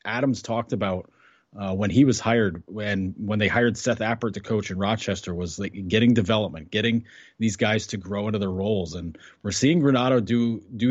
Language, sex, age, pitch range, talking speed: English, male, 30-49, 100-120 Hz, 200 wpm